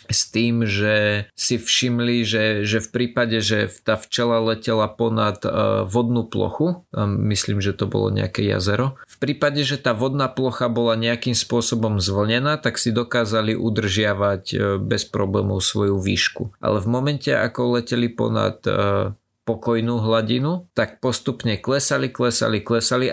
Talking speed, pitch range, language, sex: 140 wpm, 105-125 Hz, Slovak, male